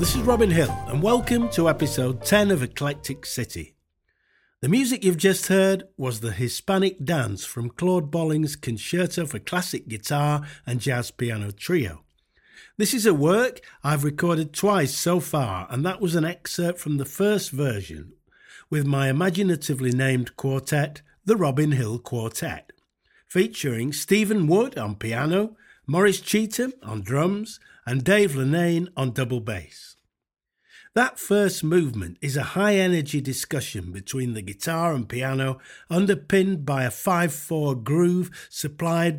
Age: 50-69